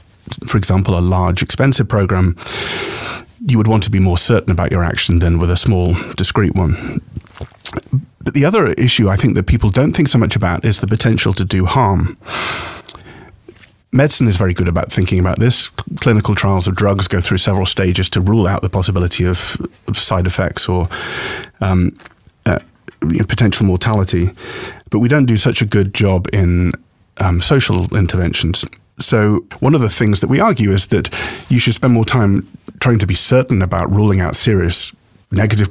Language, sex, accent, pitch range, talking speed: English, male, British, 95-115 Hz, 180 wpm